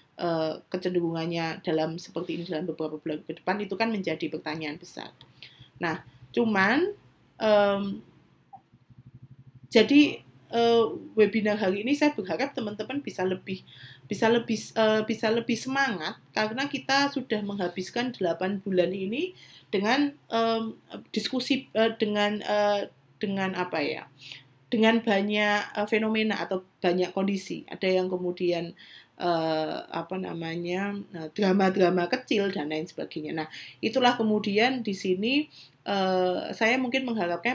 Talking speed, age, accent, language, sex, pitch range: 115 wpm, 30-49, native, Indonesian, female, 175-225 Hz